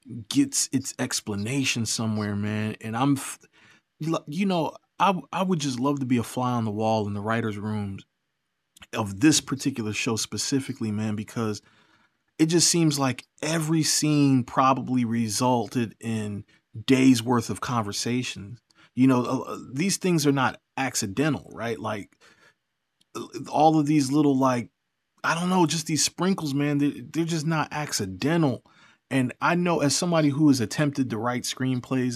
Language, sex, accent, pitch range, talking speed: English, male, American, 115-145 Hz, 155 wpm